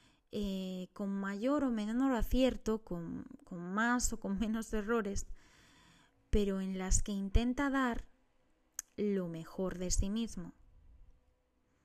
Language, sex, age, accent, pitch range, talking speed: Spanish, female, 20-39, Spanish, 190-230 Hz, 120 wpm